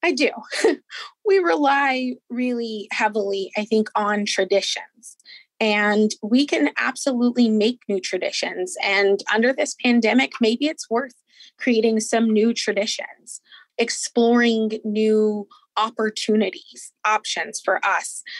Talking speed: 110 wpm